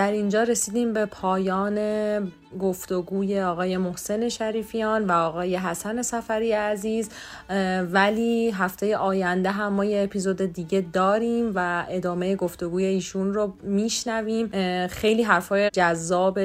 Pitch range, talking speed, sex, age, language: 180-210 Hz, 115 wpm, female, 30-49, English